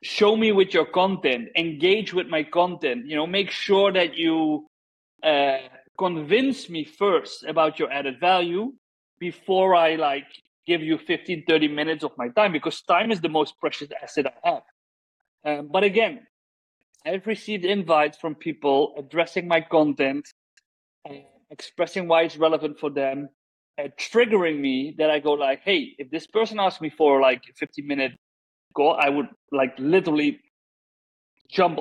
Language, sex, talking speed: English, male, 155 wpm